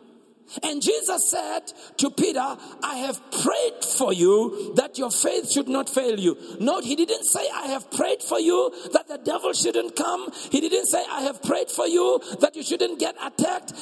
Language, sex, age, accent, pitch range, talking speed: English, male, 50-69, South African, 265-365 Hz, 190 wpm